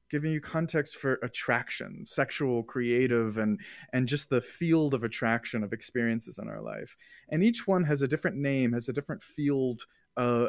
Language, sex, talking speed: English, male, 175 wpm